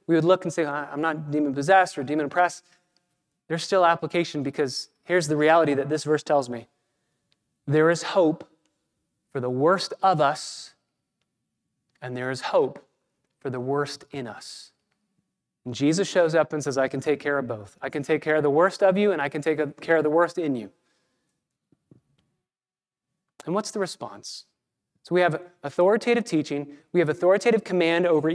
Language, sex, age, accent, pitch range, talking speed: English, male, 30-49, American, 145-180 Hz, 180 wpm